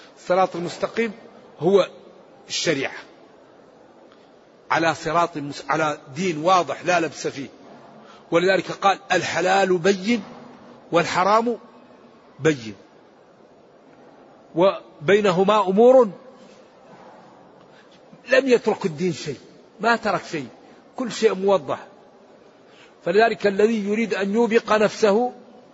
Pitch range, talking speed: 170-220 Hz, 85 wpm